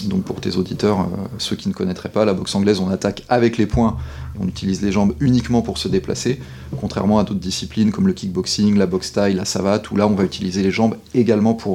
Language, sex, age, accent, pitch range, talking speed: French, male, 30-49, French, 95-120 Hz, 240 wpm